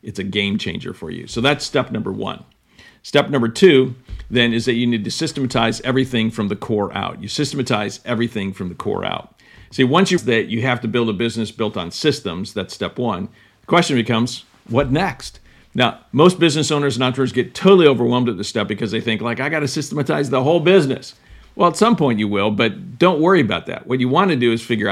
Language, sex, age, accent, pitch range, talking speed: English, male, 50-69, American, 110-140 Hz, 230 wpm